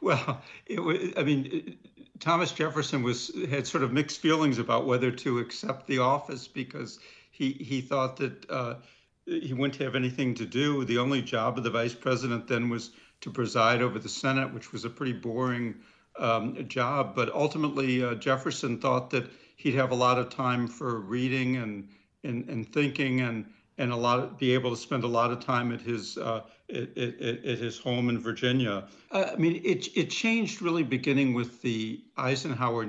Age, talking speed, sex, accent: 70-89, 190 wpm, male, American